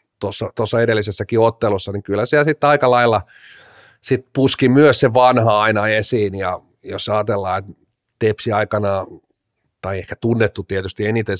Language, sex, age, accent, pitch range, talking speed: Finnish, male, 40-59, native, 95-115 Hz, 140 wpm